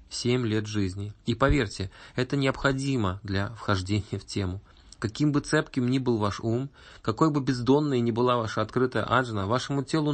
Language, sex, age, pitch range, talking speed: Russian, male, 20-39, 105-125 Hz, 165 wpm